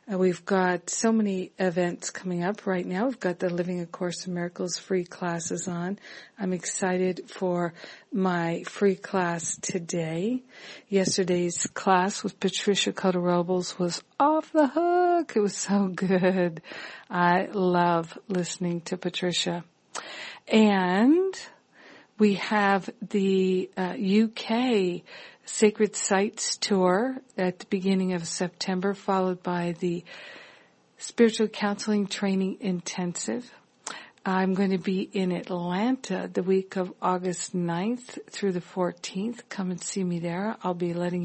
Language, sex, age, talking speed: English, female, 50-69, 130 wpm